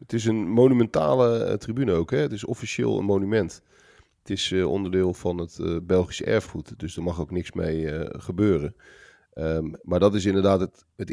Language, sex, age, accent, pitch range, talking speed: Dutch, male, 40-59, Dutch, 85-100 Hz, 165 wpm